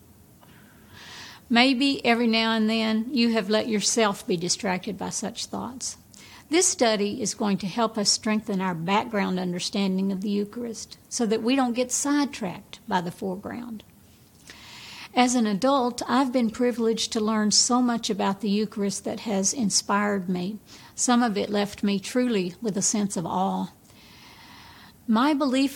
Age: 60-79